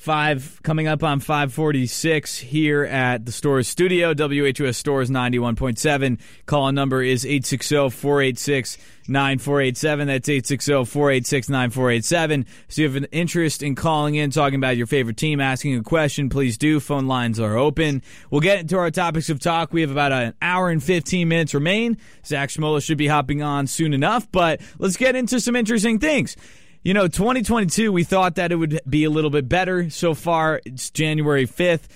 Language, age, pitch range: English, 20-39, 135-165 Hz